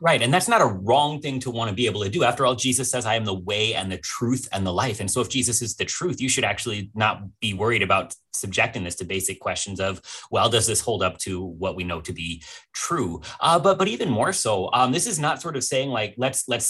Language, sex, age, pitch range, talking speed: English, male, 30-49, 95-130 Hz, 275 wpm